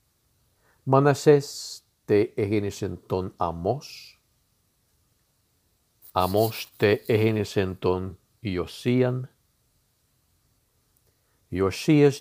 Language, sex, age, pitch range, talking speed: English, male, 50-69, 95-120 Hz, 55 wpm